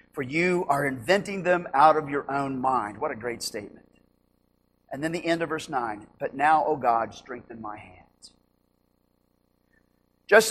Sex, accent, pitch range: male, American, 135-195 Hz